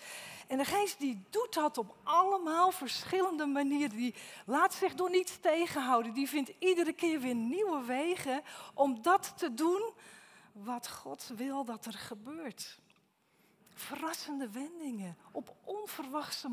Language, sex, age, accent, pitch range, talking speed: Dutch, female, 40-59, Dutch, 220-305 Hz, 135 wpm